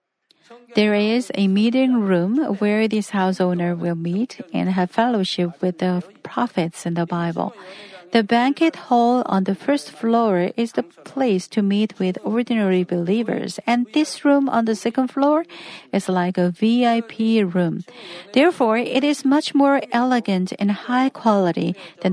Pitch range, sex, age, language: 185-240 Hz, female, 50-69, Korean